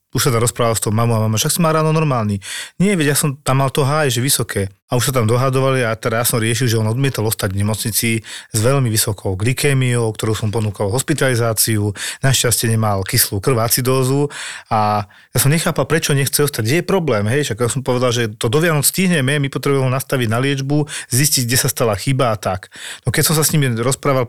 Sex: male